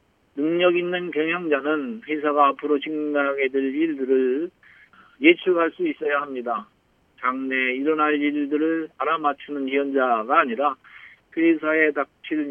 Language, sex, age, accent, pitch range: Korean, male, 40-59, native, 135-165 Hz